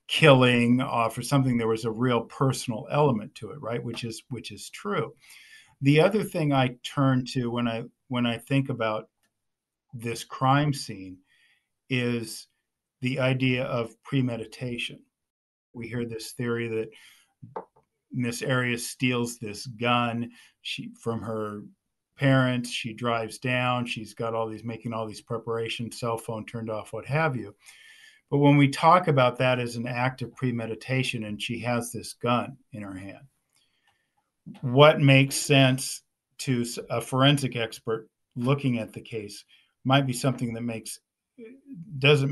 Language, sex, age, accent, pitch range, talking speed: English, male, 50-69, American, 115-135 Hz, 150 wpm